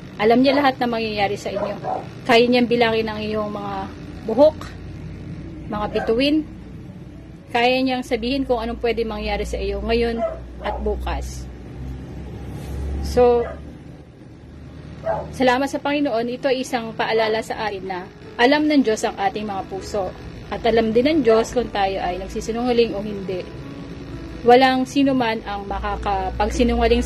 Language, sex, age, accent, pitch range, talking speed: Filipino, female, 20-39, native, 200-245 Hz, 135 wpm